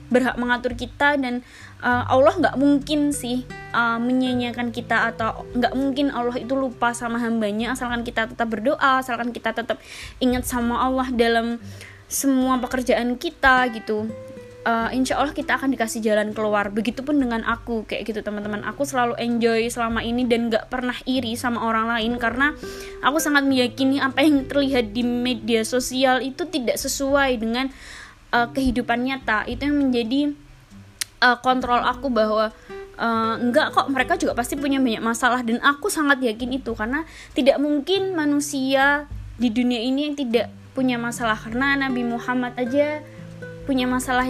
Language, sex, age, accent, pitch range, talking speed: Indonesian, female, 20-39, native, 230-270 Hz, 160 wpm